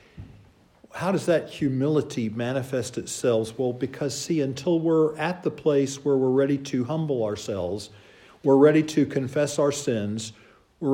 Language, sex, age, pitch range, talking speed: English, male, 50-69, 130-170 Hz, 150 wpm